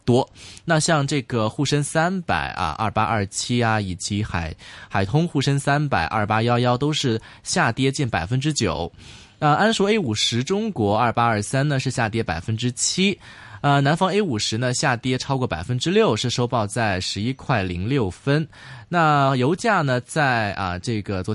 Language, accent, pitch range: Chinese, native, 105-145 Hz